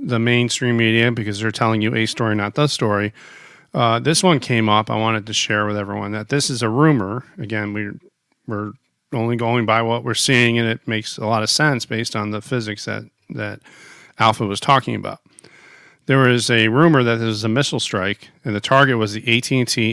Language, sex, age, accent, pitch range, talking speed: English, male, 40-59, American, 110-130 Hz, 210 wpm